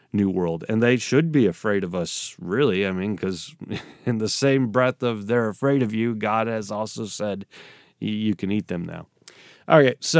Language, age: English, 30-49